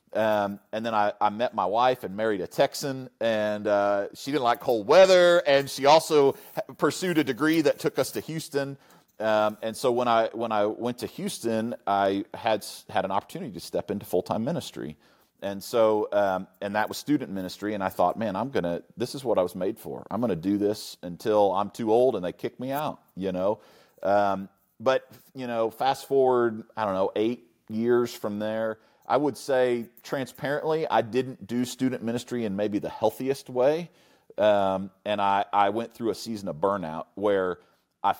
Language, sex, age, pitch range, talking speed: English, male, 40-59, 100-130 Hz, 200 wpm